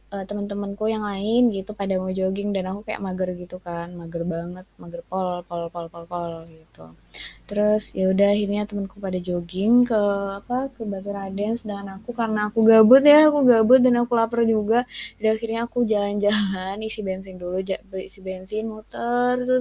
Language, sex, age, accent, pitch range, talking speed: Indonesian, female, 20-39, native, 190-230 Hz, 175 wpm